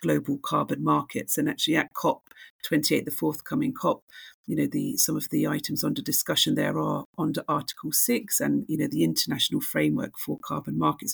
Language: English